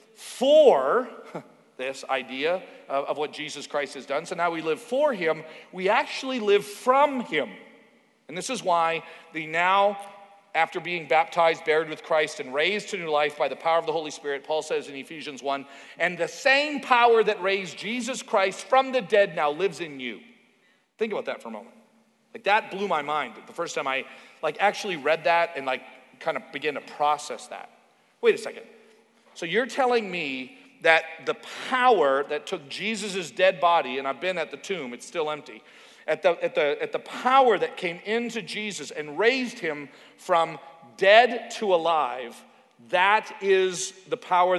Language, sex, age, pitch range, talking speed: English, male, 40-59, 155-225 Hz, 180 wpm